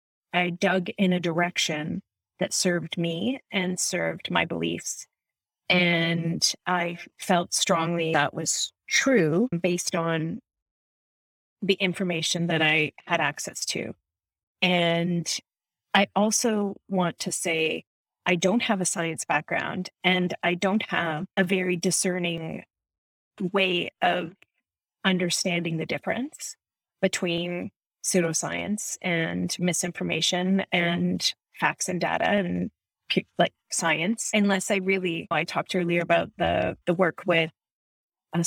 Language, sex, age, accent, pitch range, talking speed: English, female, 30-49, American, 170-190 Hz, 120 wpm